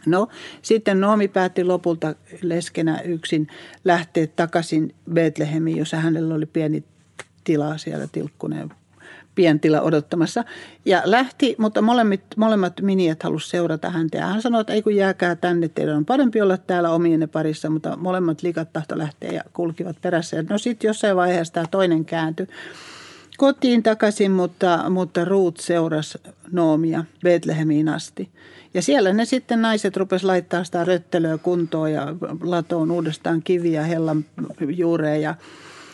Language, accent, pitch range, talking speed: Finnish, native, 160-195 Hz, 140 wpm